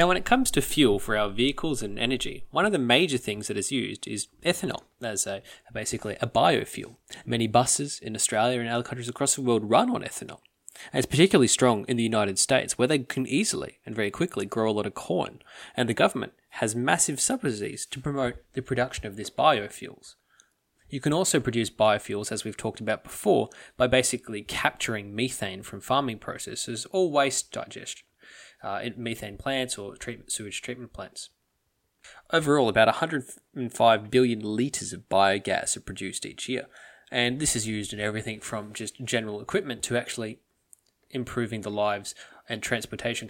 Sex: male